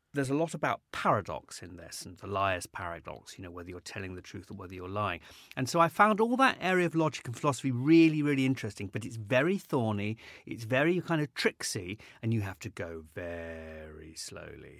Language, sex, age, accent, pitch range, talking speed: English, male, 30-49, British, 100-145 Hz, 210 wpm